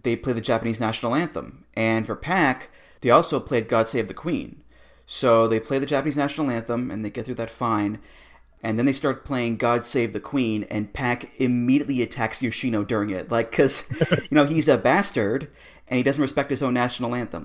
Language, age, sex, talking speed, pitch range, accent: English, 30-49, male, 205 wpm, 110-130 Hz, American